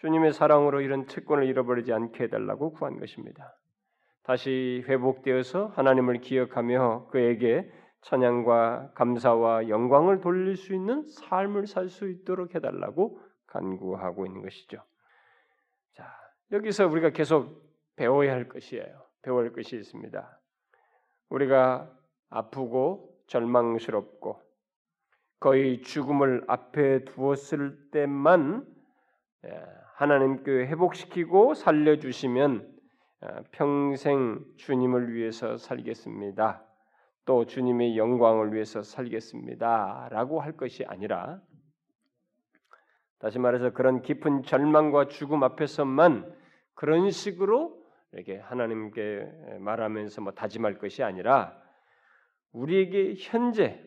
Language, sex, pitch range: Korean, male, 125-180 Hz